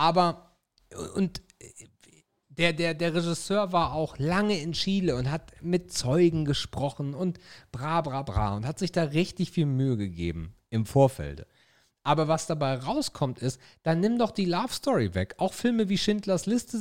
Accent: German